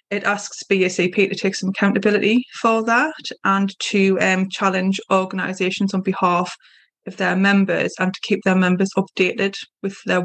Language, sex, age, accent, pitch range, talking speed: English, female, 20-39, British, 180-205 Hz, 160 wpm